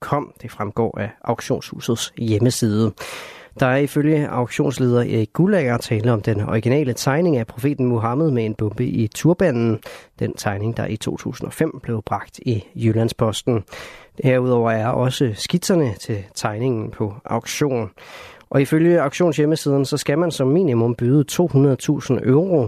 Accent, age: native, 30-49